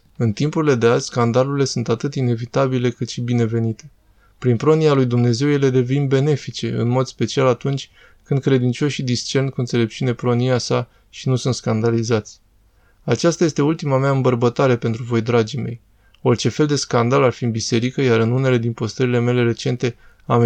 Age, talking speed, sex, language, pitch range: 20-39, 170 wpm, male, Romanian, 115-135 Hz